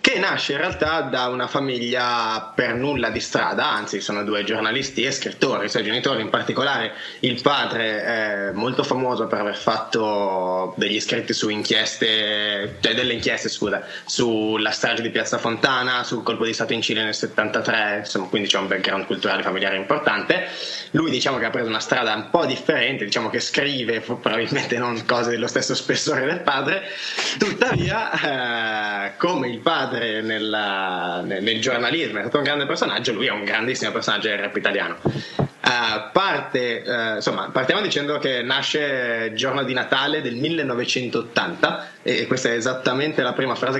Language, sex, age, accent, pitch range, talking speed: Italian, male, 20-39, native, 110-130 Hz, 170 wpm